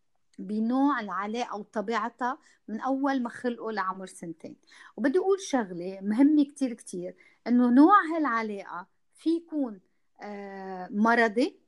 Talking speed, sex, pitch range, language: 110 wpm, female, 205-265 Hz, Arabic